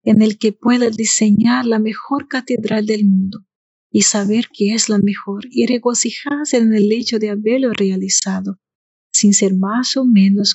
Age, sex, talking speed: 40-59, female, 165 wpm